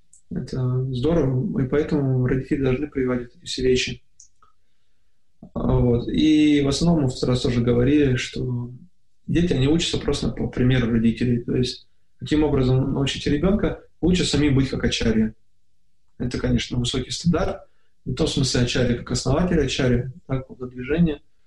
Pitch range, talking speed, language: 120-155 Hz, 150 wpm, Russian